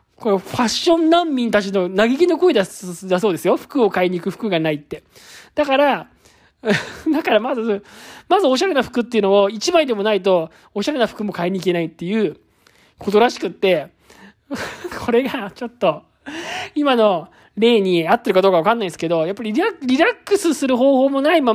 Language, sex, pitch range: Japanese, male, 200-315 Hz